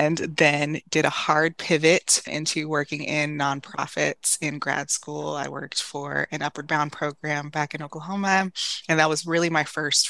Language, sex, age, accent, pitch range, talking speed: English, female, 20-39, American, 140-165 Hz, 170 wpm